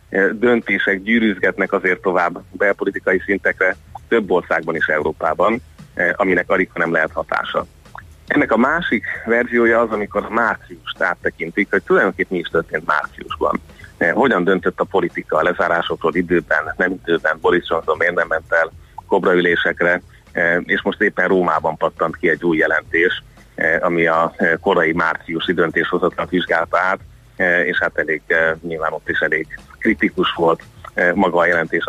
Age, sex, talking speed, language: 30-49, male, 135 wpm, Hungarian